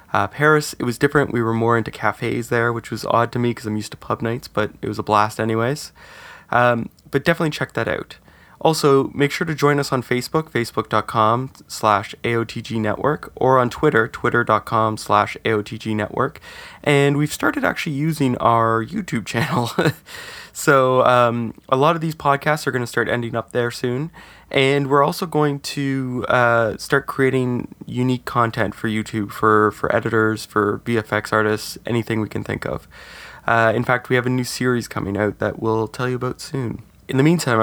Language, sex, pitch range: English, male, 110-135 Hz